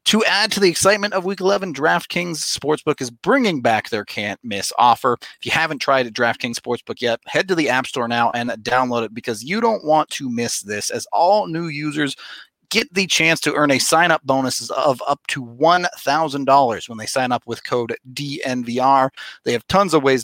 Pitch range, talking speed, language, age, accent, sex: 120-160 Hz, 200 wpm, English, 30-49, American, male